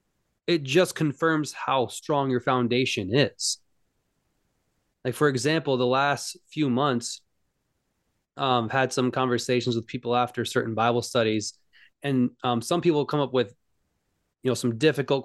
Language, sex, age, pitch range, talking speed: English, male, 20-39, 120-145 Hz, 140 wpm